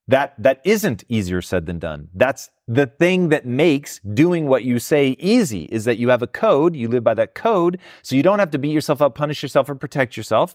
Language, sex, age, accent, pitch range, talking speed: English, male, 30-49, American, 110-165 Hz, 235 wpm